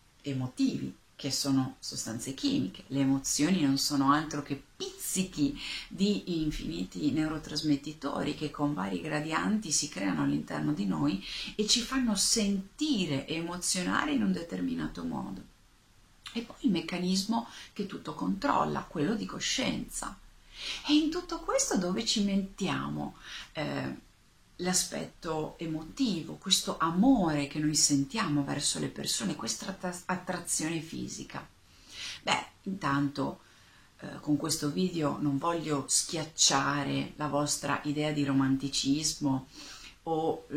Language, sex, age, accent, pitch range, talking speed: Italian, female, 40-59, native, 140-185 Hz, 115 wpm